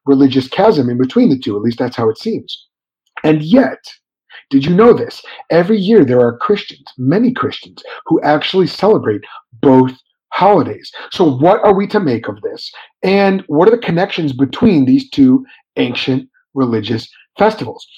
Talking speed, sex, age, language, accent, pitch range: 165 wpm, male, 30-49, English, American, 135-200 Hz